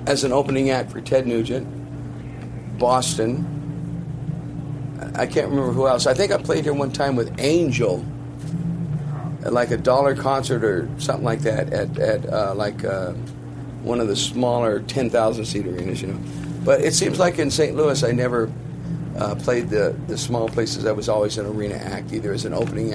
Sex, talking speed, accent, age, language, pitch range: male, 185 wpm, American, 50-69, English, 110-140 Hz